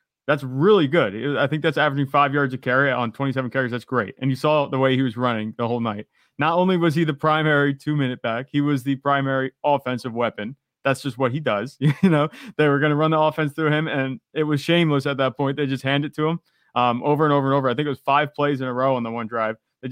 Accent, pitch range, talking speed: American, 125-150 Hz, 270 wpm